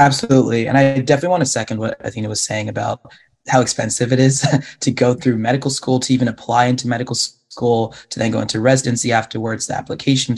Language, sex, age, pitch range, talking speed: English, male, 20-39, 115-135 Hz, 210 wpm